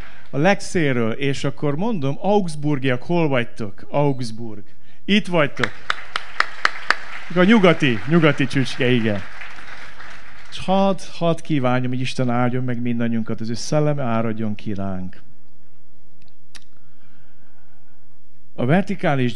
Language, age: Hungarian, 50-69